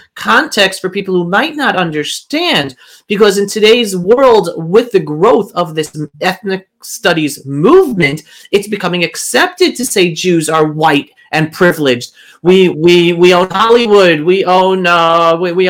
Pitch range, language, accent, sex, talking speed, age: 180-240 Hz, English, American, male, 150 wpm, 30-49